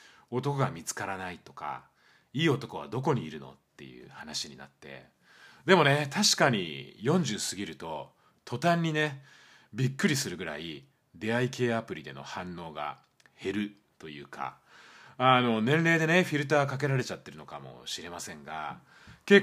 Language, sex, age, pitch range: Japanese, male, 30-49, 105-150 Hz